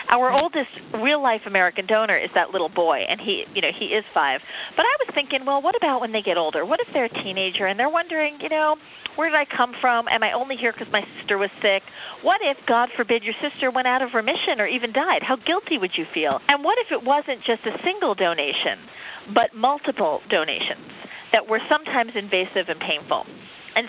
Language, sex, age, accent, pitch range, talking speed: English, female, 40-59, American, 200-275 Hz, 220 wpm